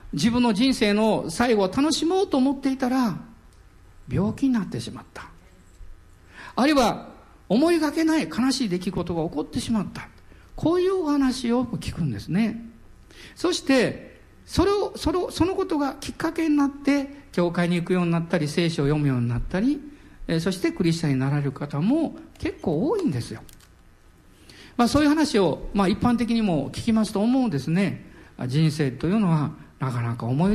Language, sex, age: Japanese, male, 50-69